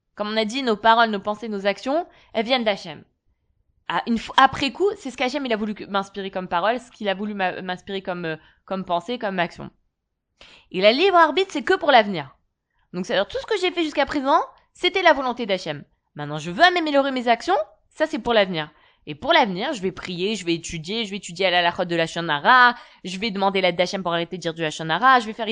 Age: 20-39